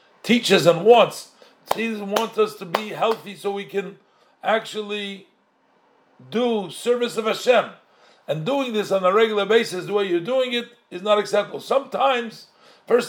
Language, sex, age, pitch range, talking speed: English, male, 50-69, 180-220 Hz, 155 wpm